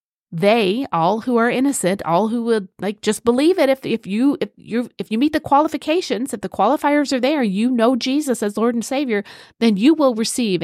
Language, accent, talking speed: English, American, 215 wpm